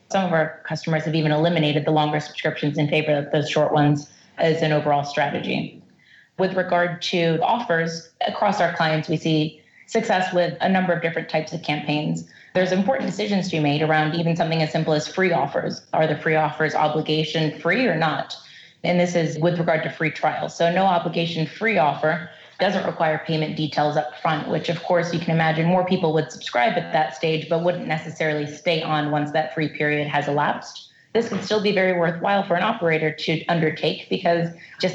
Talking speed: 200 wpm